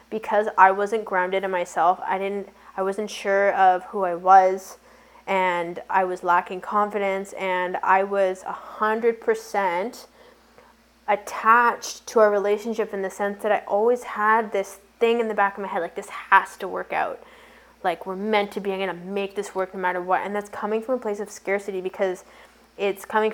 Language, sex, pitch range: English, female, 190-210 Hz